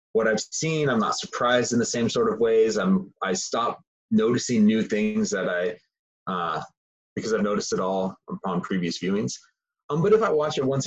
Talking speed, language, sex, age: 205 wpm, English, male, 30-49